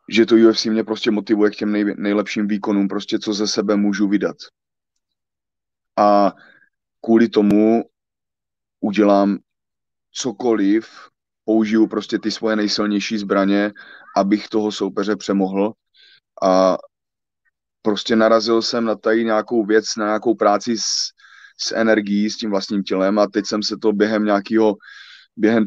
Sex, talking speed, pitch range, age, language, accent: male, 135 wpm, 100-110 Hz, 30-49, Czech, native